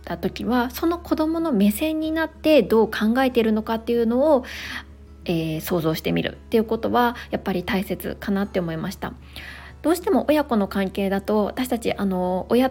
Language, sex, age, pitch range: Japanese, female, 20-39, 190-265 Hz